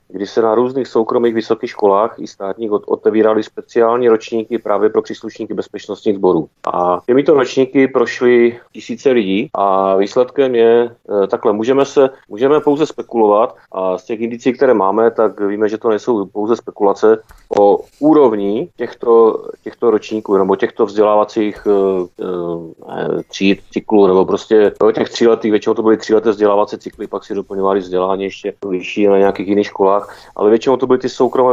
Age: 30-49